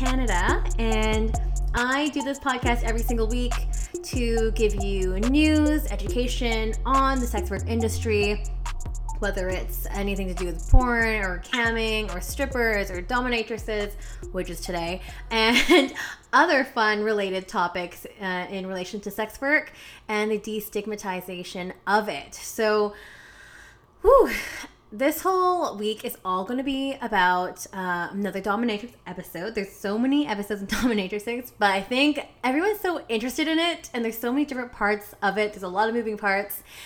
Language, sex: English, female